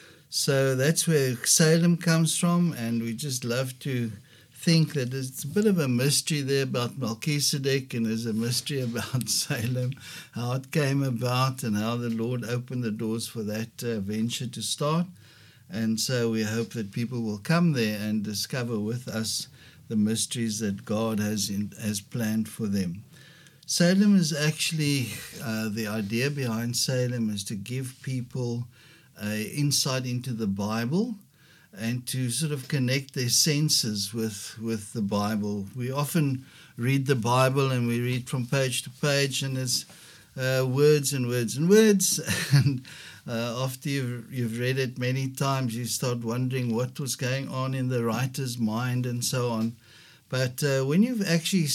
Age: 60-79